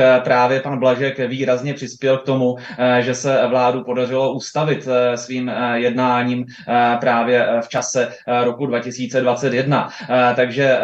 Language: Czech